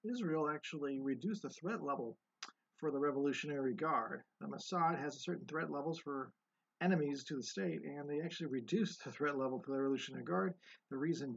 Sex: male